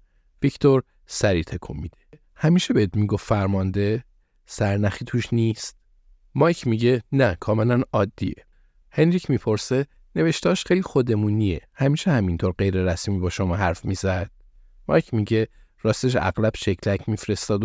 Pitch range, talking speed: 95-120 Hz, 115 wpm